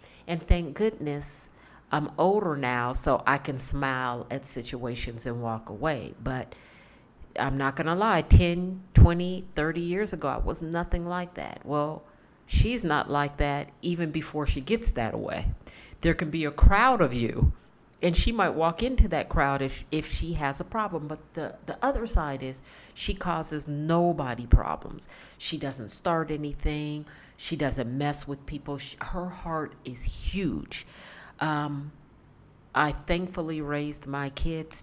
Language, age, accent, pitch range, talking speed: English, 50-69, American, 135-165 Hz, 155 wpm